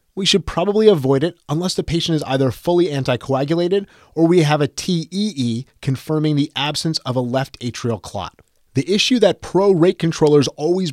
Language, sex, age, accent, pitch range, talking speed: English, male, 30-49, American, 135-175 Hz, 170 wpm